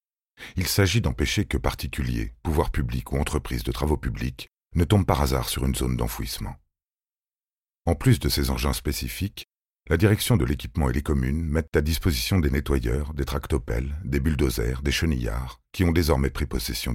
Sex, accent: male, French